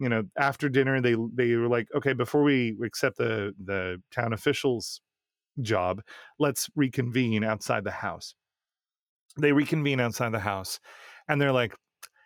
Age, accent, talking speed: 30-49, American, 145 wpm